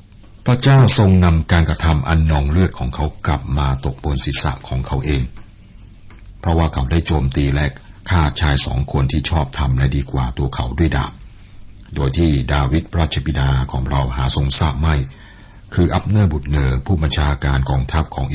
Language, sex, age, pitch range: Thai, male, 60-79, 65-85 Hz